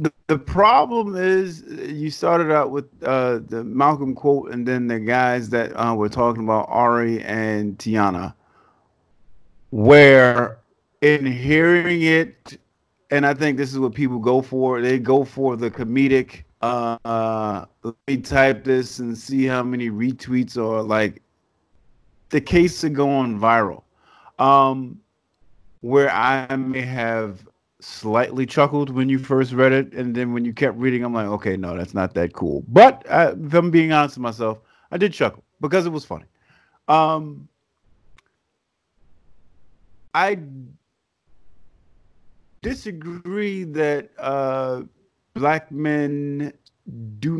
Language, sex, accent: English, male, American